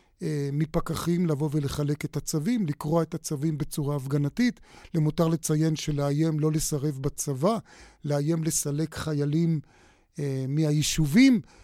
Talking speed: 115 wpm